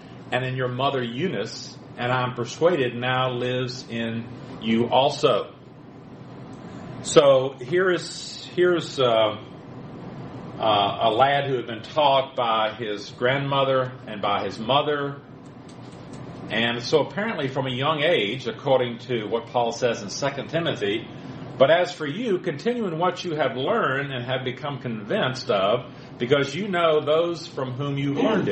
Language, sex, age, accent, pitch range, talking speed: English, male, 40-59, American, 125-150 Hz, 145 wpm